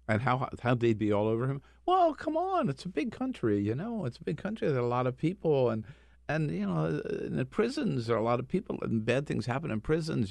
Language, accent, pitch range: English, American, 100-130 Hz